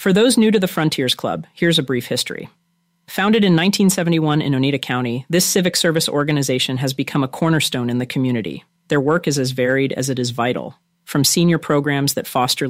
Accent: American